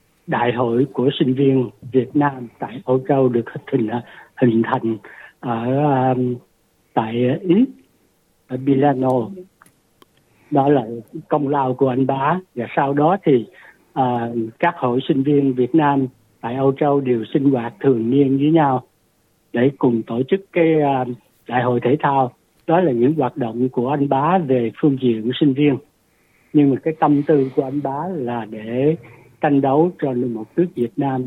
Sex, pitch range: male, 120-150 Hz